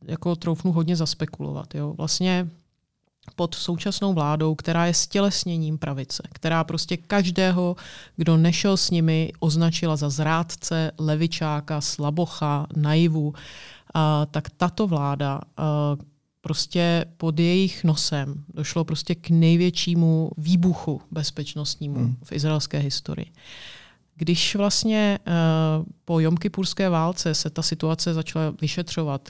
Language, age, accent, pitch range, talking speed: Czech, 30-49, native, 150-170 Hz, 105 wpm